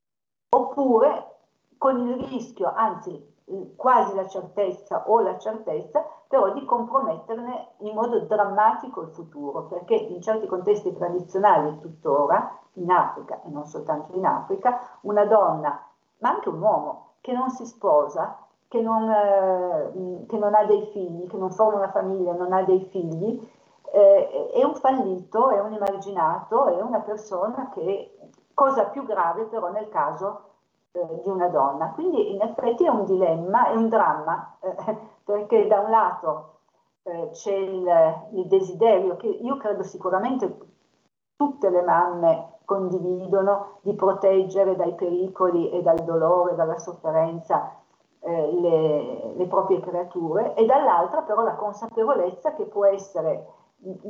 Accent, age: native, 50-69